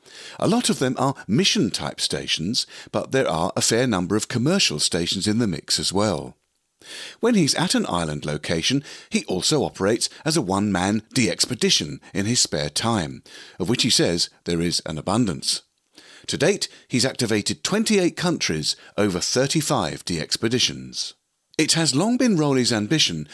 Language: English